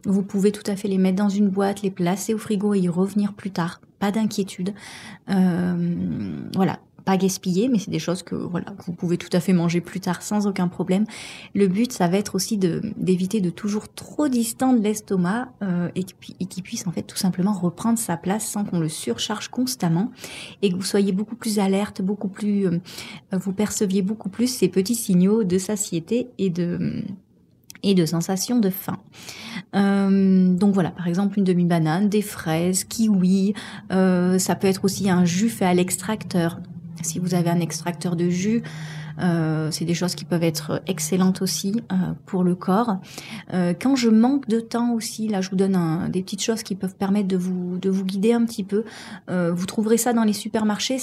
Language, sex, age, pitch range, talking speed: French, female, 30-49, 180-210 Hz, 200 wpm